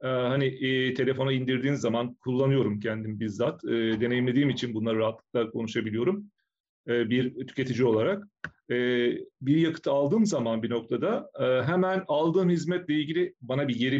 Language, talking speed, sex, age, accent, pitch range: Turkish, 145 wpm, male, 40-59, native, 125-170 Hz